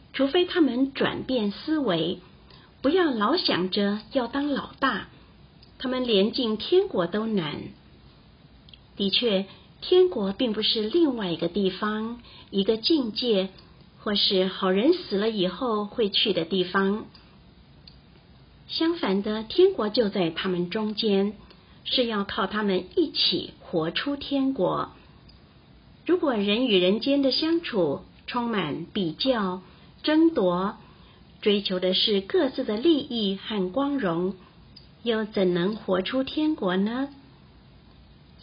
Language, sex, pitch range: Chinese, female, 190-265 Hz